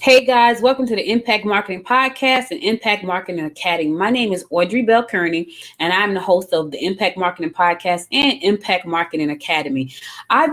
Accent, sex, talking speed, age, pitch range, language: American, female, 180 wpm, 20-39, 165-210 Hz, English